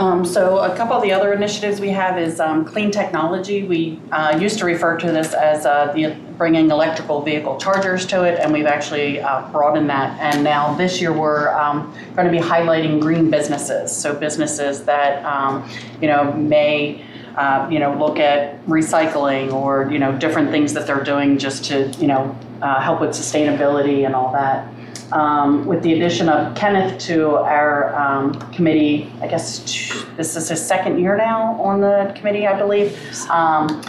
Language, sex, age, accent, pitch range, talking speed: English, female, 30-49, American, 140-165 Hz, 185 wpm